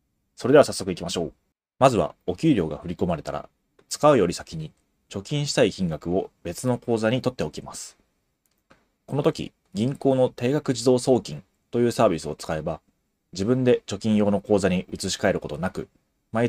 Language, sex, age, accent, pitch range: Japanese, male, 30-49, native, 100-130 Hz